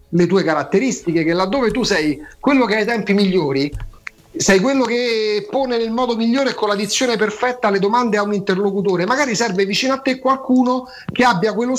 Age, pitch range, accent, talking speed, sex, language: 40-59, 160-240 Hz, native, 200 wpm, male, Italian